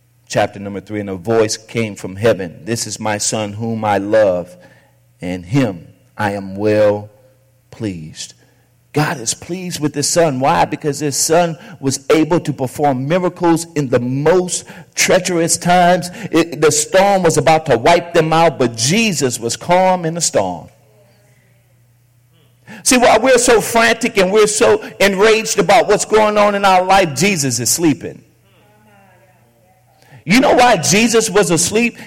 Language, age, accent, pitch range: English, 50-69, American, 130-215 Hz